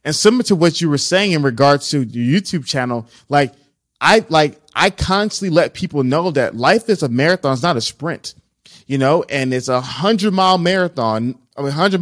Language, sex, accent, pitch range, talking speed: English, male, American, 140-190 Hz, 200 wpm